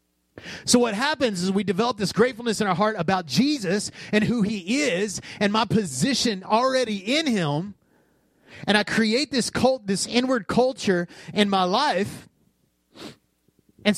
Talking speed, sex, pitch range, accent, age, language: 150 wpm, male, 145-230 Hz, American, 30-49, English